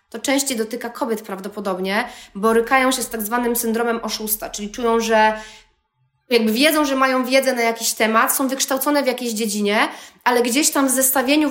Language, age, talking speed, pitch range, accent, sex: Polish, 20-39, 170 wpm, 230-270 Hz, native, female